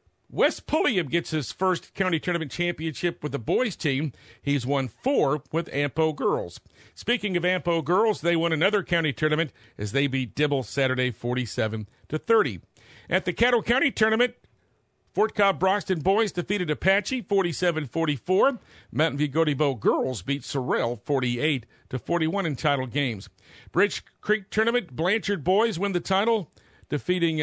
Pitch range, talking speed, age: 135-180 Hz, 140 wpm, 50-69